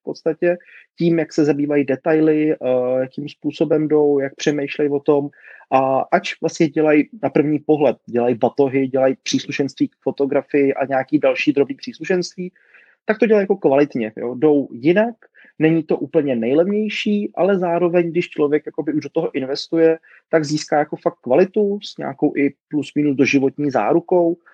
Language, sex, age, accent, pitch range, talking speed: Czech, male, 30-49, native, 140-165 Hz, 155 wpm